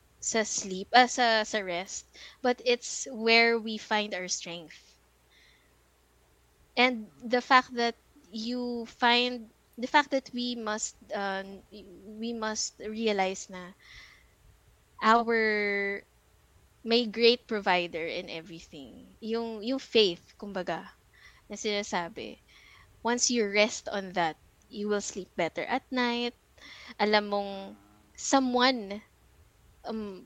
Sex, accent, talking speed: female, native, 110 wpm